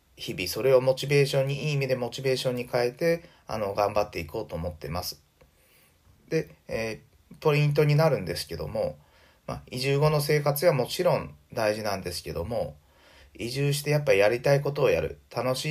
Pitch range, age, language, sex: 105-150 Hz, 30-49, Japanese, male